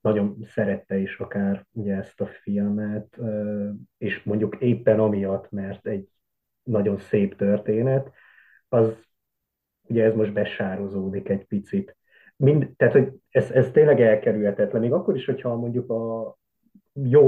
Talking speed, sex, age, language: 125 wpm, male, 30-49, Hungarian